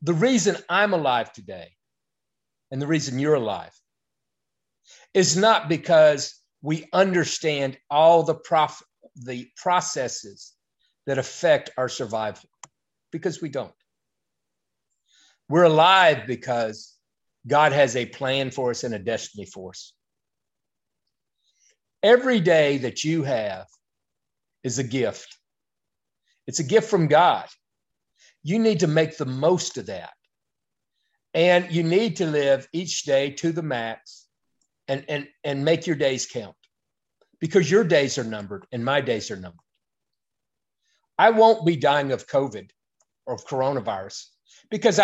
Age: 50-69